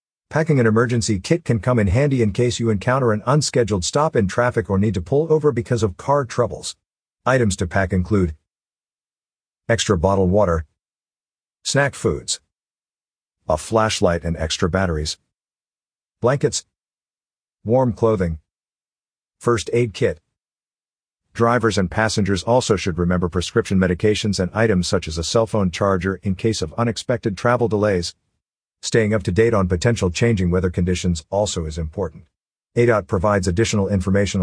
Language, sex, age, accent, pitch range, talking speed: English, male, 50-69, American, 90-115 Hz, 145 wpm